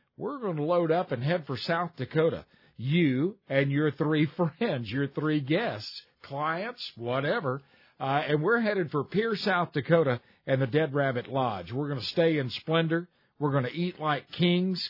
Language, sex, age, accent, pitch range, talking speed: English, male, 50-69, American, 135-170 Hz, 180 wpm